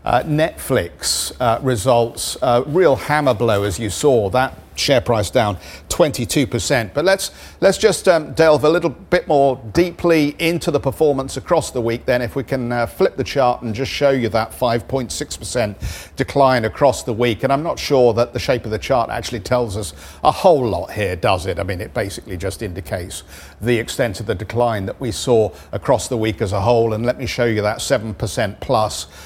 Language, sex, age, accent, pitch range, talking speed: English, male, 50-69, British, 110-140 Hz, 215 wpm